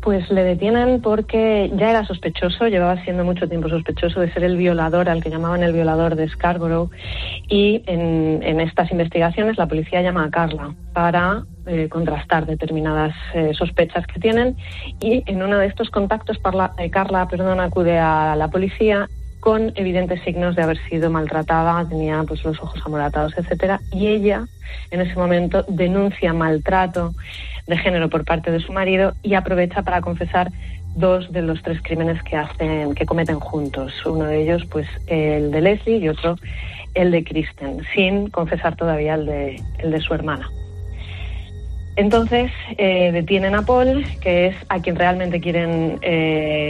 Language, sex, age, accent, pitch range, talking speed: Spanish, female, 30-49, Spanish, 160-190 Hz, 165 wpm